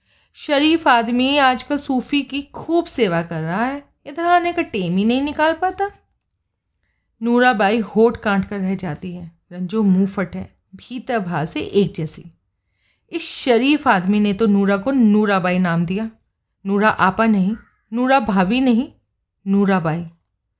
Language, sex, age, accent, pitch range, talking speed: Hindi, female, 30-49, native, 195-280 Hz, 145 wpm